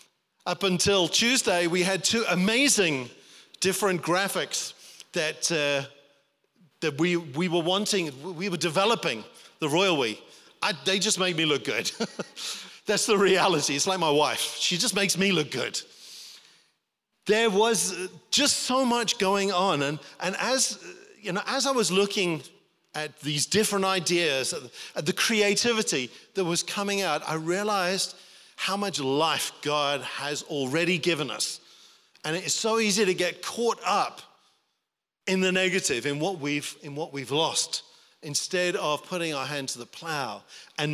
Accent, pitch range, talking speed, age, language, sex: British, 150-200 Hz, 155 wpm, 40-59, English, male